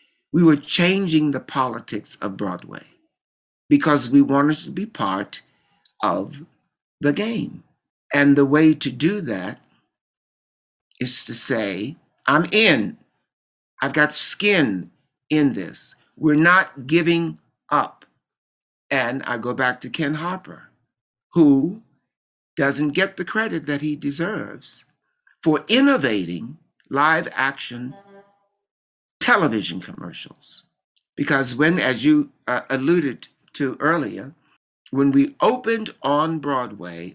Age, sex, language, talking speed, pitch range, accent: 60-79, male, English, 115 wpm, 130-165 Hz, American